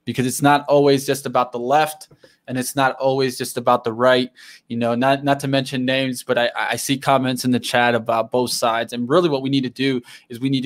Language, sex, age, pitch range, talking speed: English, male, 20-39, 125-140 Hz, 250 wpm